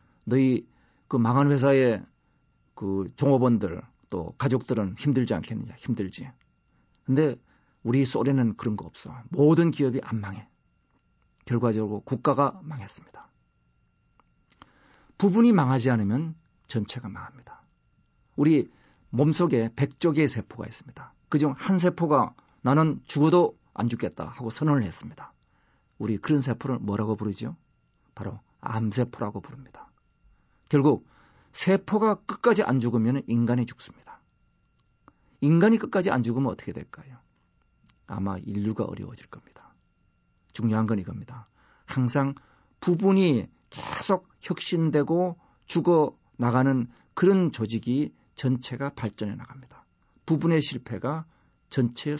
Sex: male